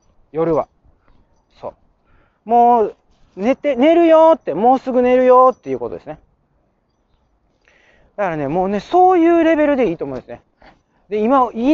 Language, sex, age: Japanese, male, 40-59